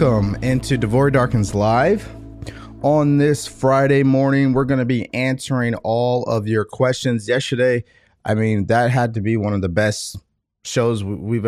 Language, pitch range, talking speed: English, 100-125 Hz, 160 wpm